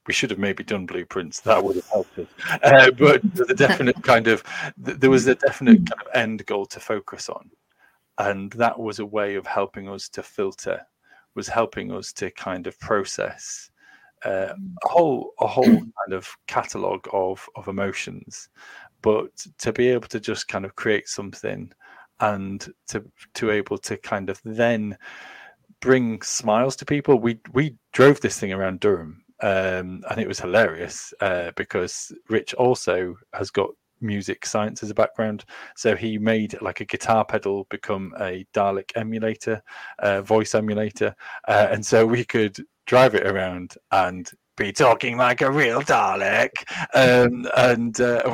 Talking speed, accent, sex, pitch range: 165 wpm, British, male, 100-130 Hz